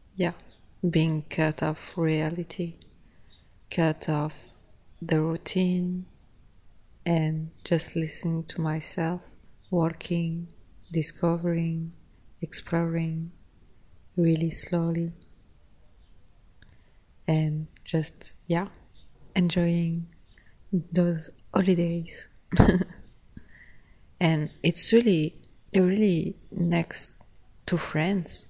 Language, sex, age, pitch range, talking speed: English, female, 30-49, 155-175 Hz, 65 wpm